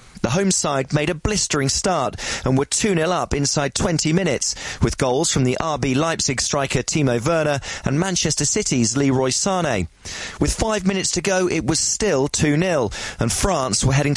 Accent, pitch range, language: British, 125-175 Hz, English